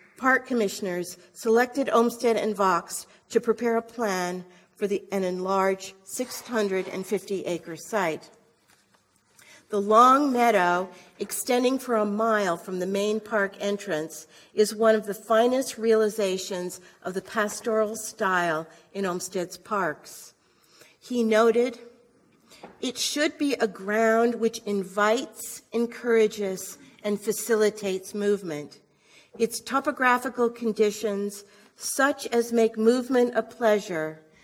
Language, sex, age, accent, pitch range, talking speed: English, female, 50-69, American, 185-230 Hz, 110 wpm